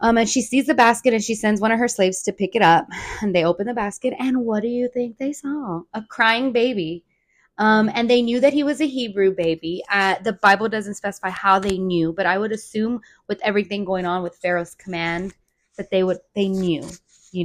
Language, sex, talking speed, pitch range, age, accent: English, female, 230 wpm, 180-225 Hz, 20-39, American